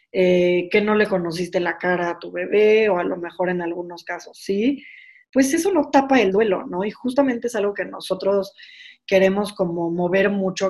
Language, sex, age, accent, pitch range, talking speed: Spanish, female, 20-39, Mexican, 180-235 Hz, 195 wpm